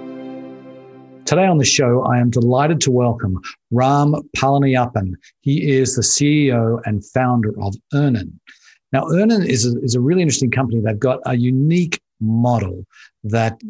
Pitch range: 105-130 Hz